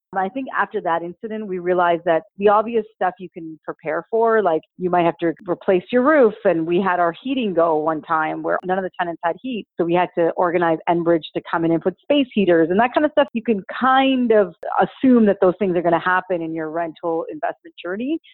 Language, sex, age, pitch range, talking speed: English, female, 40-59, 165-210 Hz, 240 wpm